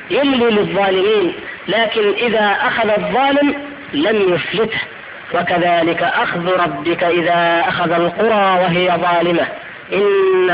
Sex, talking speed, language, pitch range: female, 95 wpm, Arabic, 175-230 Hz